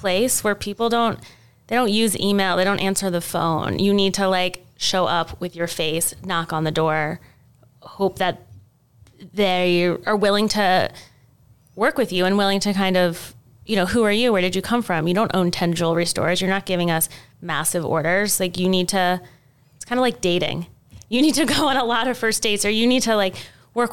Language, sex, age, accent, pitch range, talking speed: English, female, 20-39, American, 165-200 Hz, 220 wpm